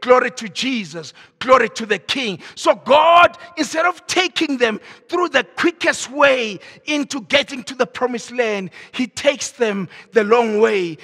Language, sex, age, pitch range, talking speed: English, male, 50-69, 225-310 Hz, 160 wpm